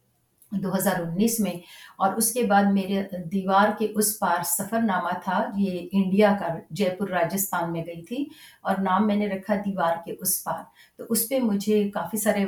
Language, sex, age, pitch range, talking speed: Urdu, female, 50-69, 175-210 Hz, 190 wpm